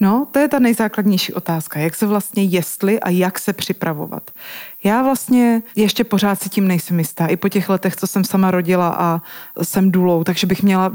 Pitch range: 180-210 Hz